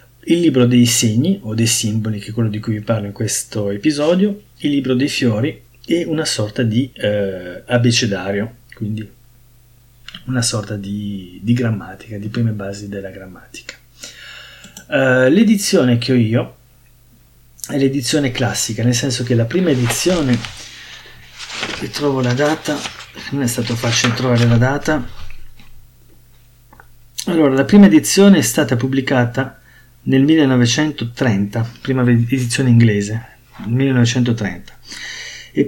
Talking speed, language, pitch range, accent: 130 wpm, Italian, 115-135 Hz, native